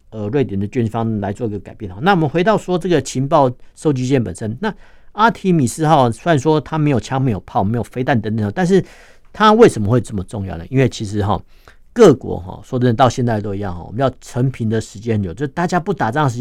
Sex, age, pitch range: male, 50-69, 105-145 Hz